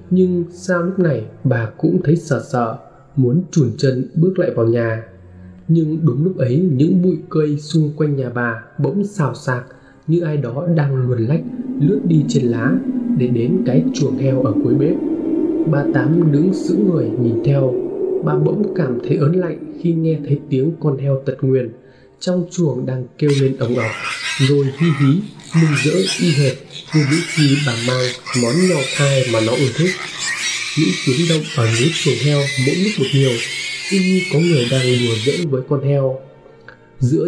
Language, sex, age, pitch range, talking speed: Vietnamese, male, 20-39, 130-170 Hz, 190 wpm